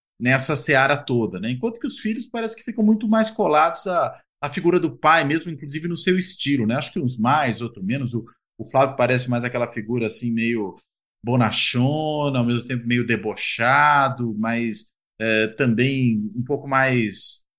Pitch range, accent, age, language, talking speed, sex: 120-155 Hz, Brazilian, 40-59, Portuguese, 175 wpm, male